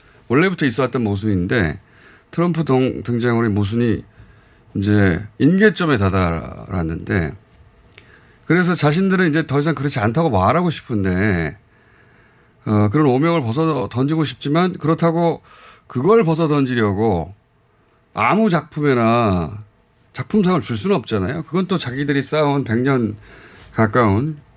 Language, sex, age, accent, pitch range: Korean, male, 30-49, native, 100-150 Hz